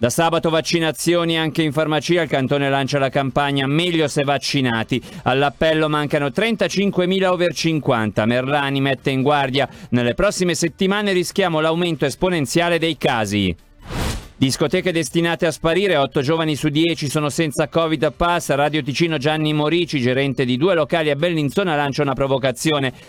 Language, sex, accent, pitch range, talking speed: Italian, male, native, 135-165 Hz, 145 wpm